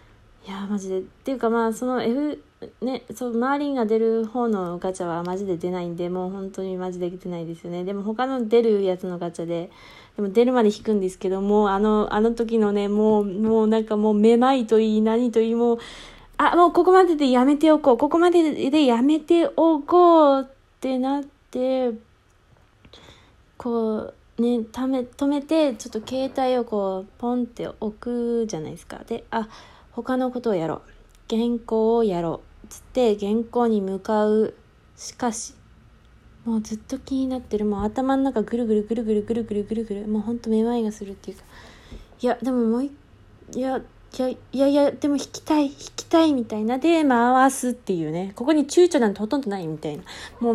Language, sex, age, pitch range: Japanese, female, 20-39, 205-260 Hz